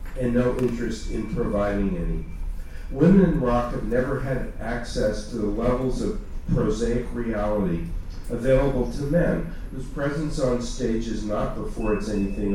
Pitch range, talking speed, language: 105-130 Hz, 150 wpm, English